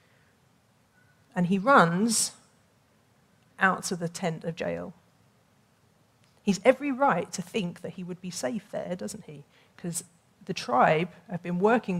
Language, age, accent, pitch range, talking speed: English, 40-59, British, 165-210 Hz, 140 wpm